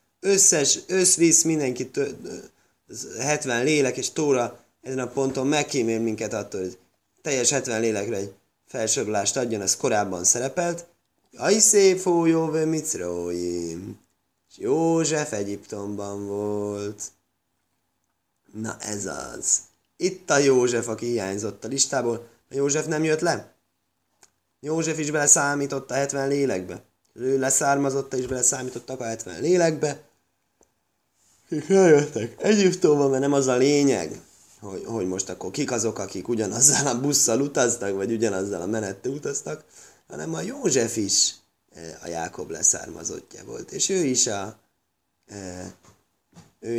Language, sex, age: Hungarian, male, 20-39